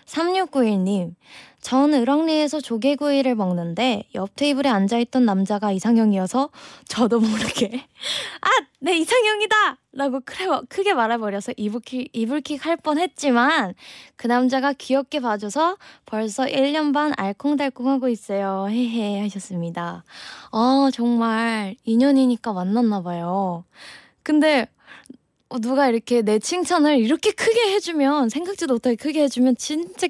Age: 20-39